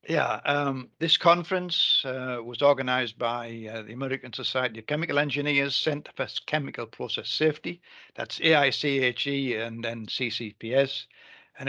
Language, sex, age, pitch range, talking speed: English, male, 60-79, 130-150 Hz, 135 wpm